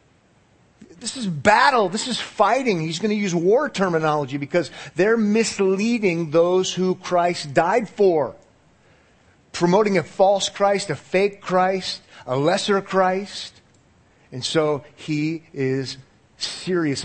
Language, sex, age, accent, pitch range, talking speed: English, male, 40-59, American, 140-195 Hz, 125 wpm